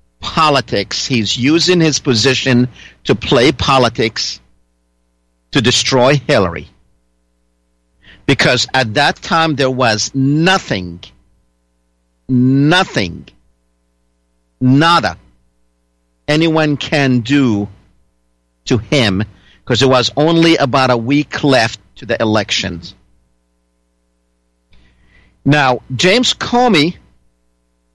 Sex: male